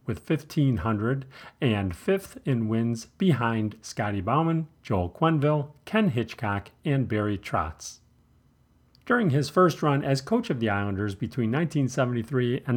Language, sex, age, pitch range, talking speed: English, male, 50-69, 105-165 Hz, 130 wpm